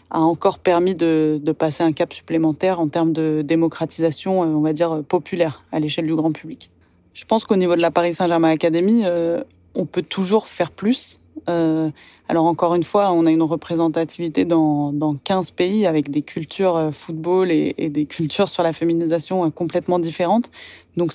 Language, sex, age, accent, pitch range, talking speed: French, female, 20-39, French, 160-190 Hz, 185 wpm